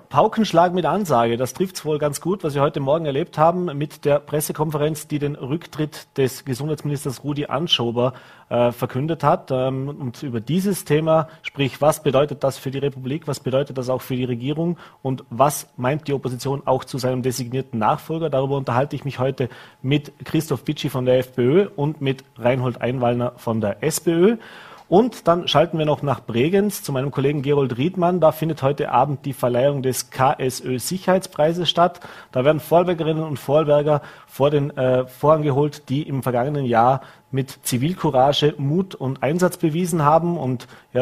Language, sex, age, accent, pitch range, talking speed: German, male, 40-59, German, 130-155 Hz, 175 wpm